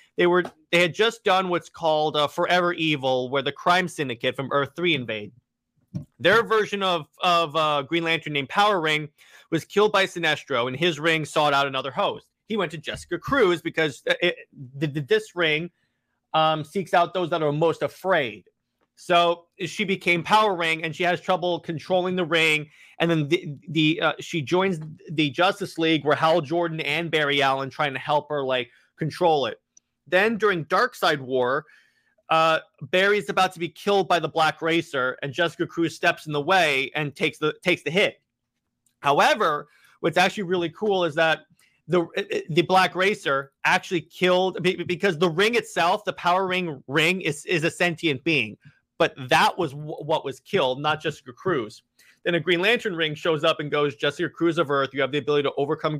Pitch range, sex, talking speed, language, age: 150-180 Hz, male, 190 wpm, English, 30-49